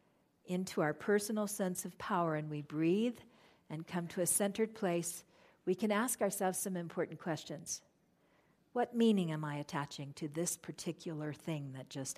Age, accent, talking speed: 50-69, American, 165 wpm